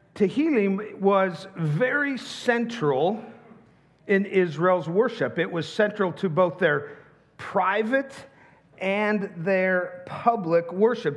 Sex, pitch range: male, 160-215 Hz